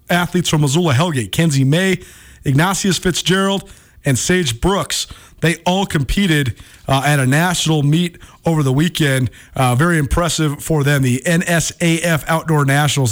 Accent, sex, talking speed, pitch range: American, male, 140 wpm, 135-170 Hz